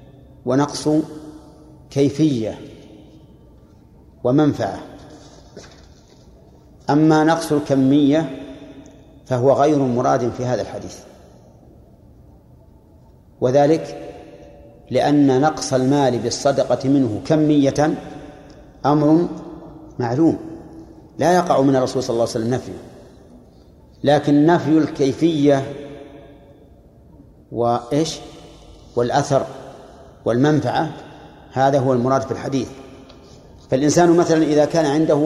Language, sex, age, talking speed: Arabic, male, 50-69, 80 wpm